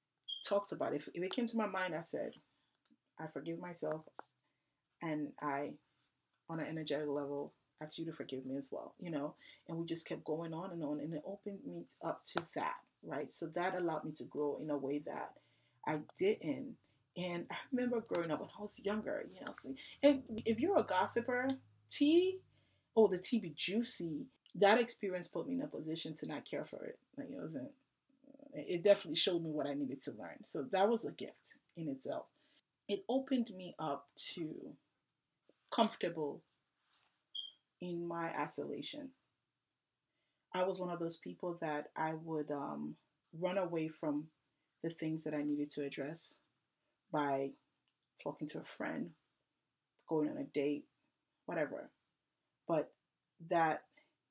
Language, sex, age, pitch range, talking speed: English, female, 30-49, 150-200 Hz, 170 wpm